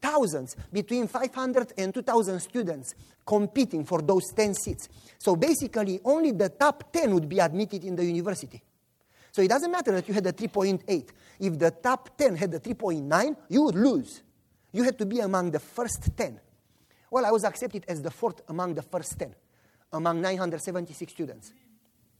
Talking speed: 175 wpm